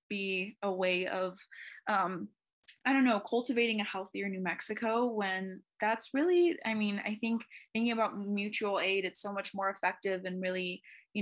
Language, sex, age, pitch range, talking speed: English, female, 10-29, 190-220 Hz, 170 wpm